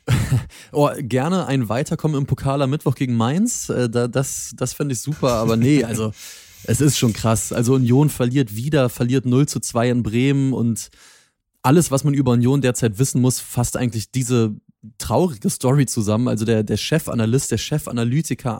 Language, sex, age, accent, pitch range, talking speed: German, male, 30-49, German, 120-140 Hz, 170 wpm